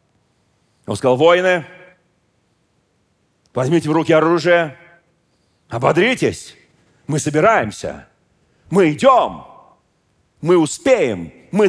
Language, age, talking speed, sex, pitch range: Russian, 40-59, 75 wpm, male, 130-175 Hz